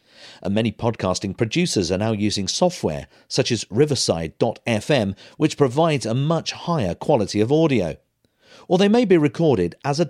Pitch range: 105-155 Hz